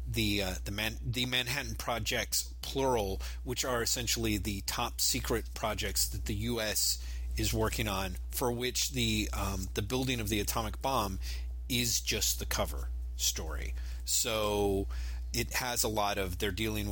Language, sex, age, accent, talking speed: English, male, 30-49, American, 155 wpm